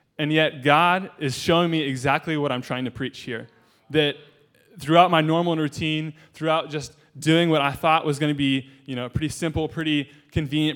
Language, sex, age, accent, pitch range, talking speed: English, male, 20-39, American, 130-155 Hz, 185 wpm